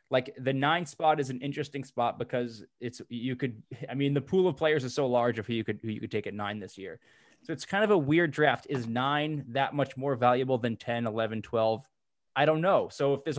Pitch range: 125-150 Hz